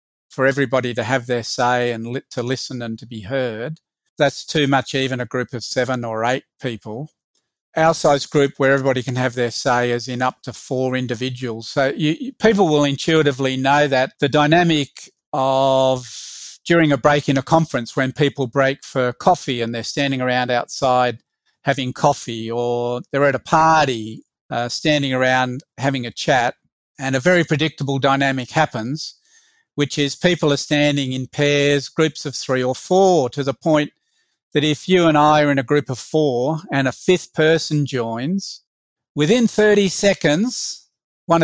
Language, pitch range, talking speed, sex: English, 130-155 Hz, 170 wpm, male